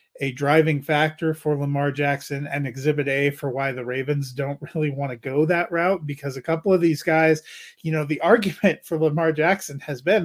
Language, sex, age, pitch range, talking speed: English, male, 30-49, 130-165 Hz, 205 wpm